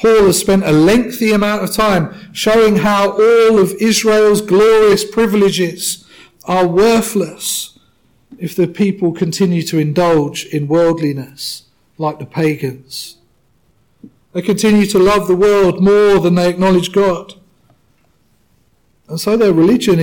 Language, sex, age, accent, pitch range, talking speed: English, male, 40-59, British, 165-210 Hz, 130 wpm